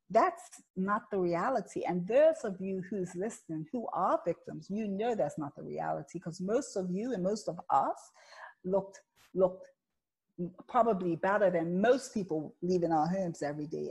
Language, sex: English, female